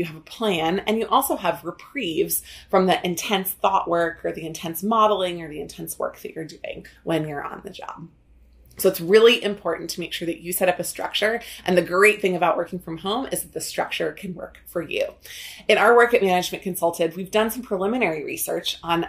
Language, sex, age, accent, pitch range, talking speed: English, female, 30-49, American, 170-210 Hz, 225 wpm